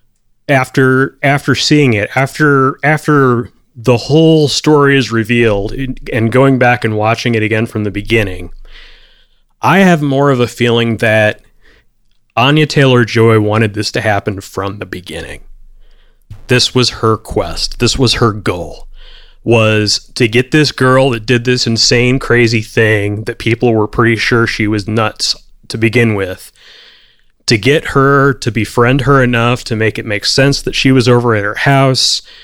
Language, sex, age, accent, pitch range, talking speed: English, male, 30-49, American, 110-140 Hz, 160 wpm